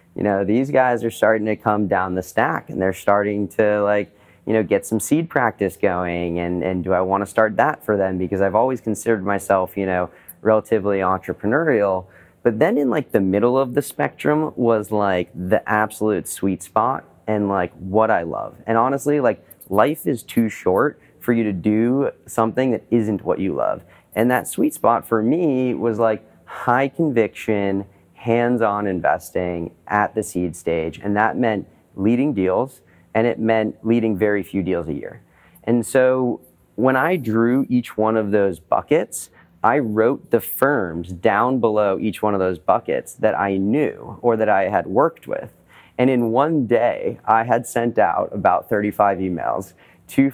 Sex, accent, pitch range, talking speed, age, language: male, American, 95-115 Hz, 180 wpm, 30-49, English